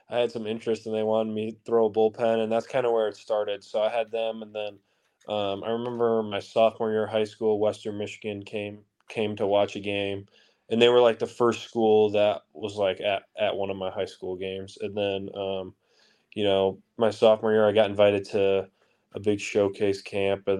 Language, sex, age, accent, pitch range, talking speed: English, male, 20-39, American, 100-115 Hz, 225 wpm